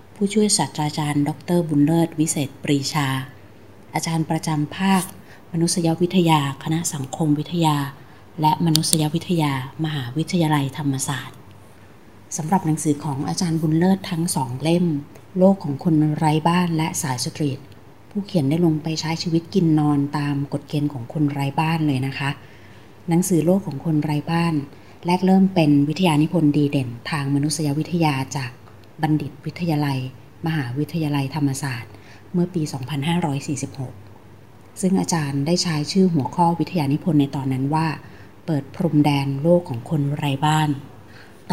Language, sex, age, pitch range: Thai, female, 30-49, 135-165 Hz